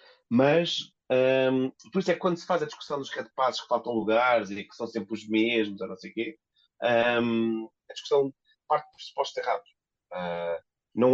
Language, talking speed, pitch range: Portuguese, 190 wpm, 105-135 Hz